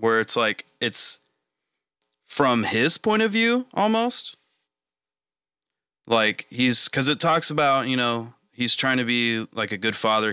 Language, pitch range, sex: English, 80-115 Hz, male